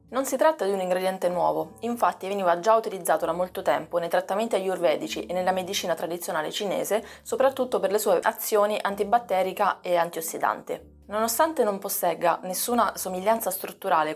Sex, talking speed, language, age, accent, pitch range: female, 155 wpm, Italian, 20-39, native, 180-235 Hz